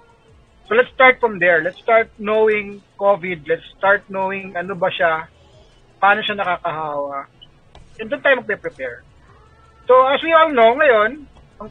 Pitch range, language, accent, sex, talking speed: 140-220 Hz, Filipino, native, male, 150 wpm